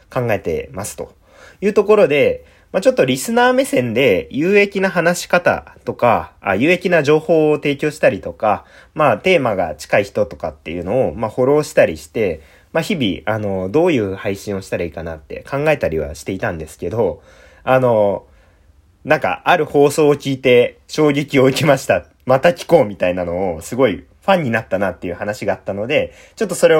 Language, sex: Japanese, male